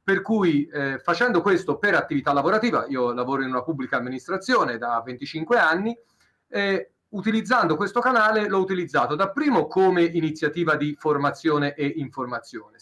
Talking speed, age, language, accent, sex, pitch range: 150 wpm, 40-59, Italian, native, male, 145-225 Hz